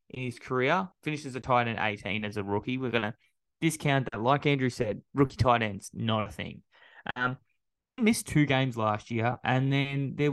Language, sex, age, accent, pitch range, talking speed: English, male, 10-29, Australian, 110-135 Hz, 200 wpm